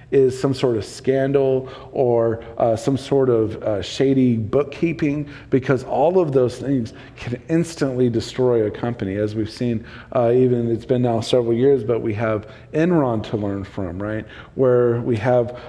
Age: 40-59